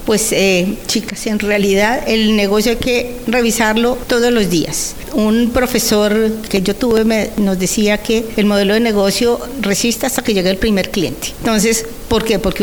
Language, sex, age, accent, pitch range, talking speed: Spanish, female, 50-69, American, 195-230 Hz, 175 wpm